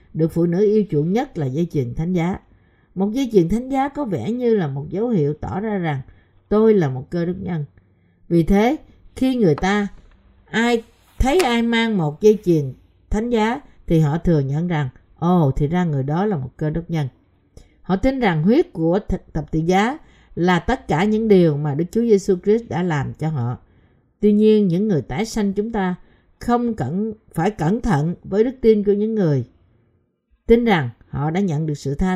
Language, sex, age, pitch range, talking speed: Vietnamese, female, 50-69, 150-215 Hz, 205 wpm